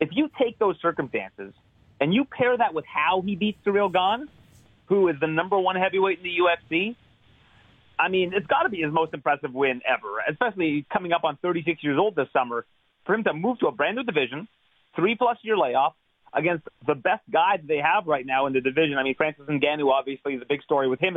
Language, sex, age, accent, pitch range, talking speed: English, male, 30-49, American, 135-185 Hz, 220 wpm